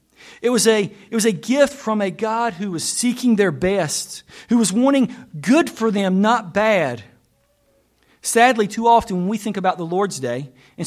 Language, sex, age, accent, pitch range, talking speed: English, male, 50-69, American, 170-230 Hz, 190 wpm